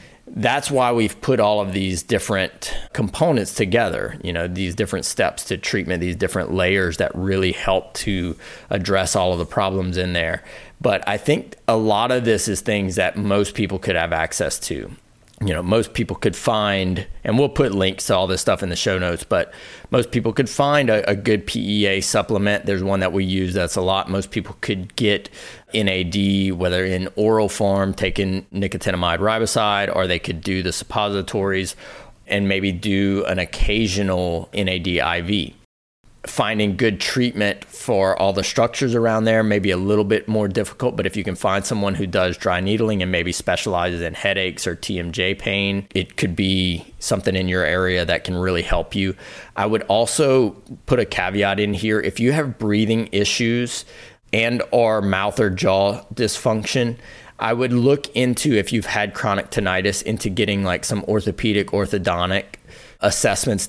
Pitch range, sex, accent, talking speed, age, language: 95-110 Hz, male, American, 175 wpm, 30-49, English